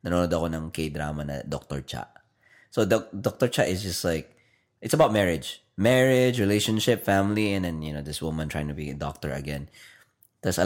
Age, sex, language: 20-39, male, Filipino